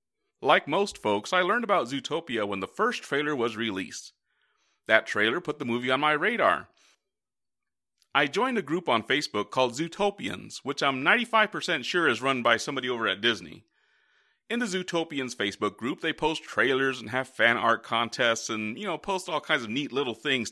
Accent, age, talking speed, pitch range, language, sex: American, 30-49, 185 wpm, 125-200 Hz, English, male